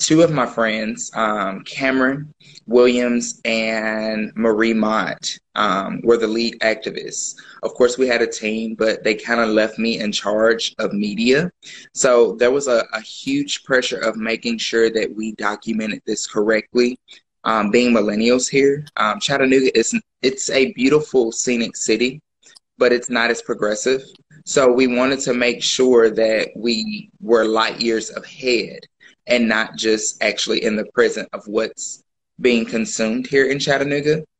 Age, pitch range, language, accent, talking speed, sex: 20-39, 110-125 Hz, English, American, 155 wpm, male